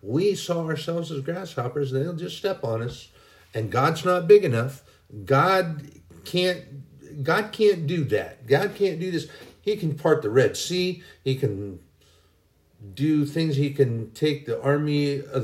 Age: 50-69